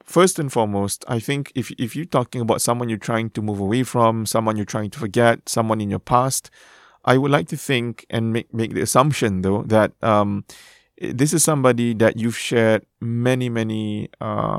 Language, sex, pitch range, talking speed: English, male, 110-130 Hz, 195 wpm